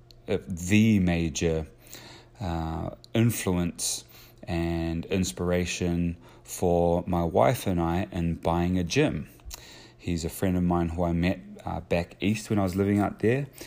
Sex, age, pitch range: male, 20-39, 85-95 Hz